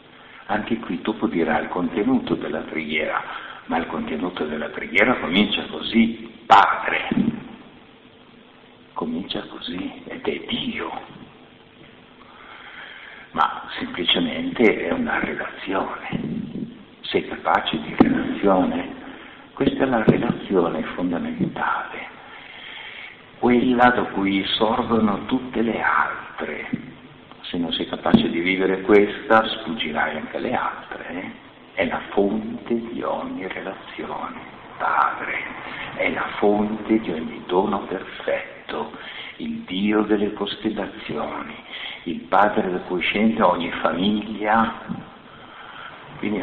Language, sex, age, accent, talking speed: Italian, male, 60-79, native, 100 wpm